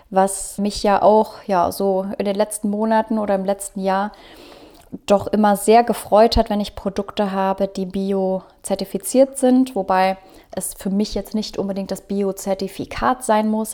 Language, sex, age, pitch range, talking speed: German, female, 20-39, 190-235 Hz, 165 wpm